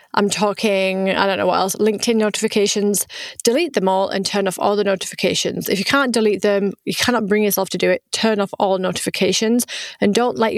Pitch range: 195-230 Hz